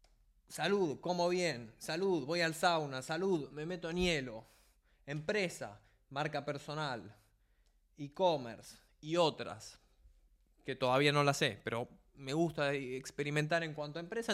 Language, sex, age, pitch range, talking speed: Spanish, male, 20-39, 140-180 Hz, 130 wpm